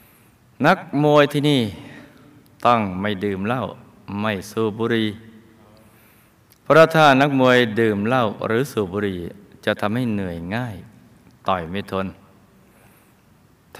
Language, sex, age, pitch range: Thai, male, 20-39, 100-130 Hz